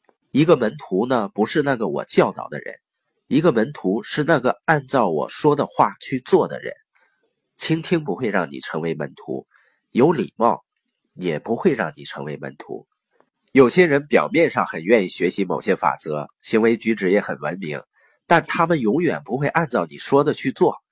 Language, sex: Chinese, male